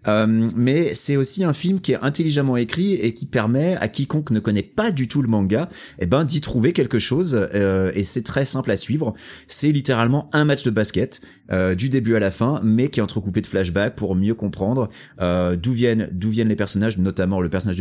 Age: 30-49